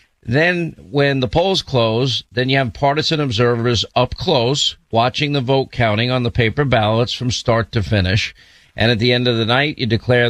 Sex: male